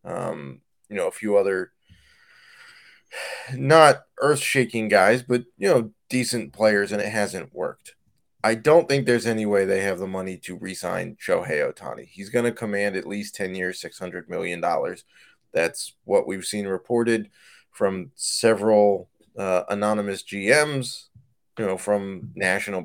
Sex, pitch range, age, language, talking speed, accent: male, 95-120 Hz, 20-39, English, 150 wpm, American